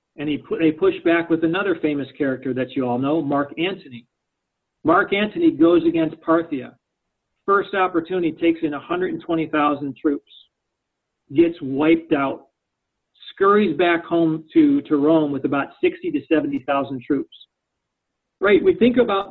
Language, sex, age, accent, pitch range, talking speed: English, male, 40-59, American, 150-220 Hz, 145 wpm